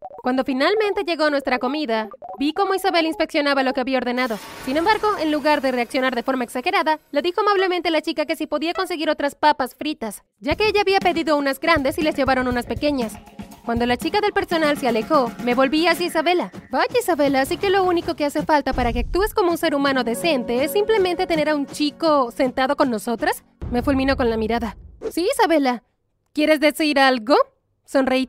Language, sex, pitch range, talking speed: Spanish, female, 260-345 Hz, 200 wpm